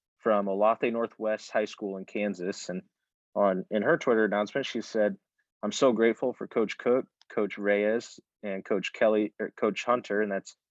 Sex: male